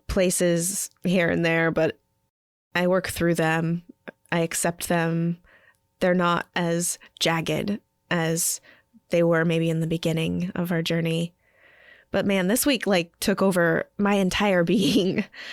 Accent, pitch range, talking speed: American, 170-210 Hz, 140 wpm